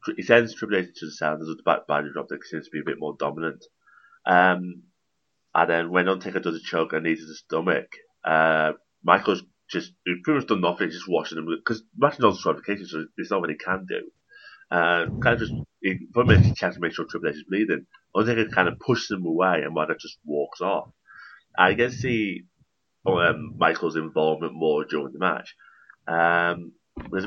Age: 30-49